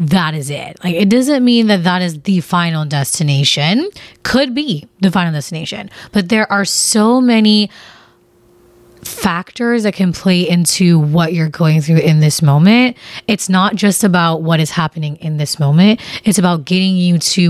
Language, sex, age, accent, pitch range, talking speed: English, female, 20-39, American, 165-210 Hz, 170 wpm